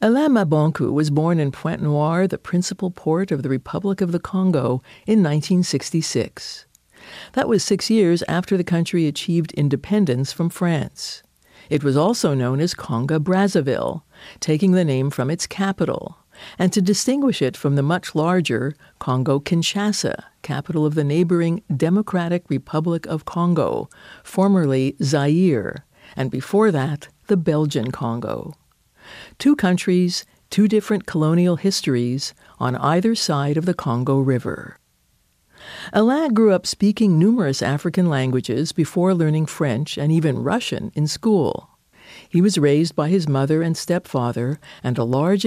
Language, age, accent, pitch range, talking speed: English, 50-69, American, 140-190 Hz, 140 wpm